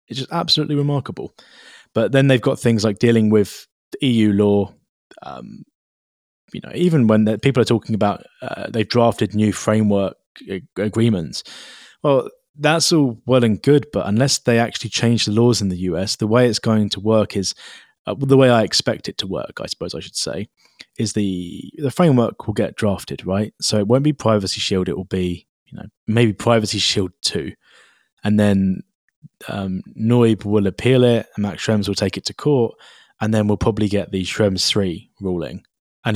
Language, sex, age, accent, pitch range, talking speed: English, male, 20-39, British, 95-115 Hz, 190 wpm